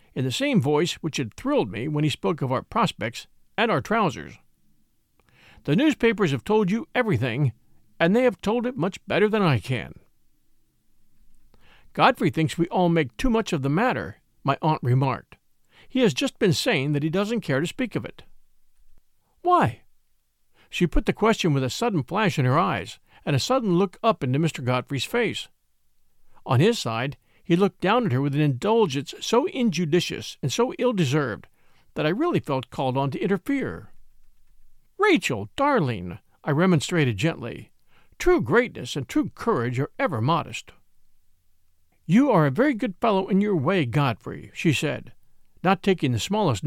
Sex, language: male, English